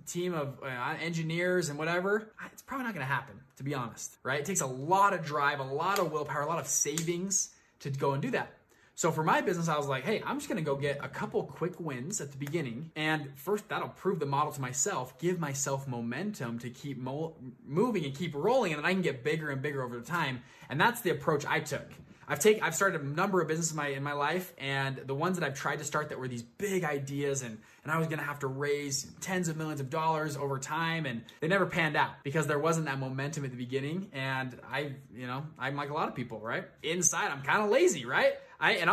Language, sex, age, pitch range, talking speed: English, male, 20-39, 140-185 Hz, 250 wpm